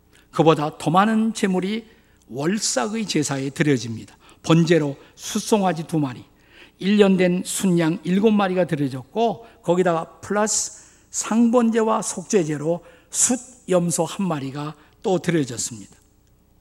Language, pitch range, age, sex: Korean, 145-195 Hz, 50-69, male